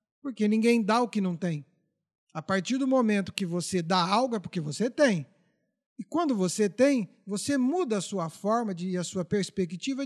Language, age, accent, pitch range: Portuguese, 50-69, Brazilian, 190-245 Hz